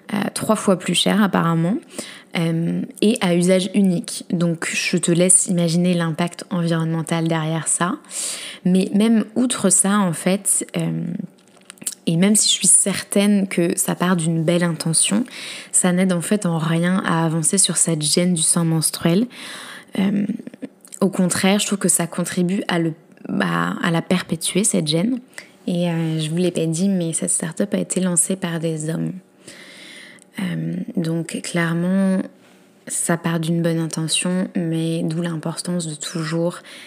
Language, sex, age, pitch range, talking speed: French, female, 20-39, 165-195 Hz, 160 wpm